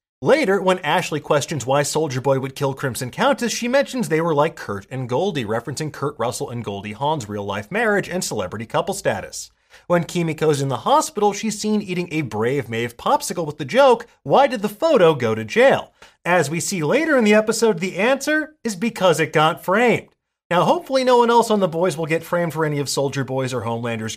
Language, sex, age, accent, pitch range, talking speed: English, male, 30-49, American, 125-210 Hz, 210 wpm